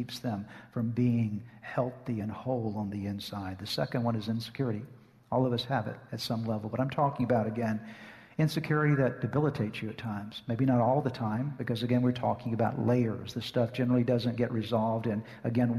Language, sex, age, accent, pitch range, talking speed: English, male, 50-69, American, 110-130 Hz, 200 wpm